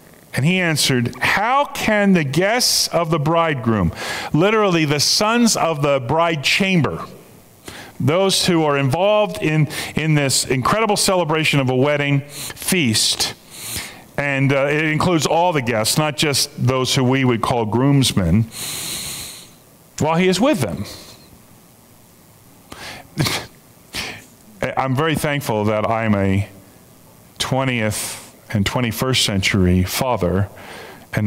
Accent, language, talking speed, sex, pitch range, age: American, English, 120 wpm, male, 125-195 Hz, 40-59